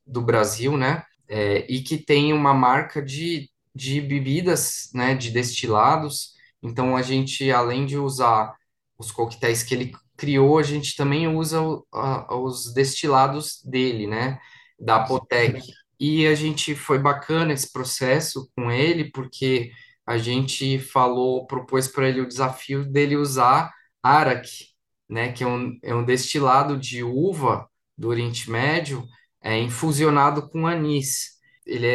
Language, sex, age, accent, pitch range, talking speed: Portuguese, male, 10-29, Brazilian, 125-150 Hz, 145 wpm